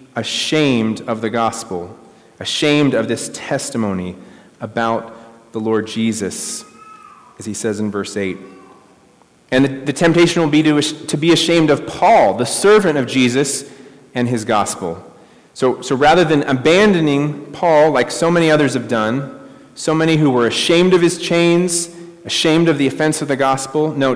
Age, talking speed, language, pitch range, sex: 30-49, 160 wpm, English, 115-150 Hz, male